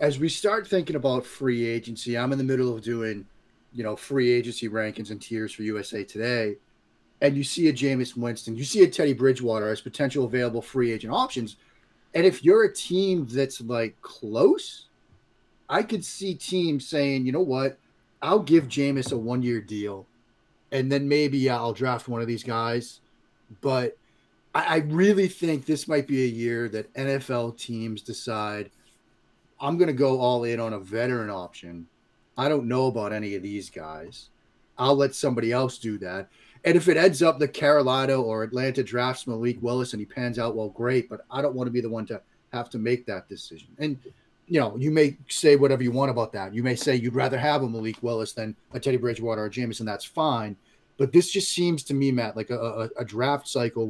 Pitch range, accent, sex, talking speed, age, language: 115-140 Hz, American, male, 205 wpm, 30-49, English